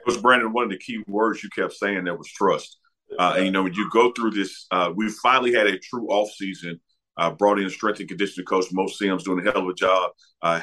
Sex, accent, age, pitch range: male, American, 40-59, 90-105 Hz